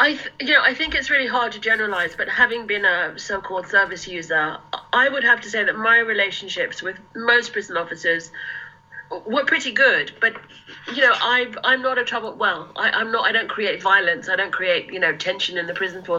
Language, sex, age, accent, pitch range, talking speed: English, female, 40-59, British, 185-240 Hz, 220 wpm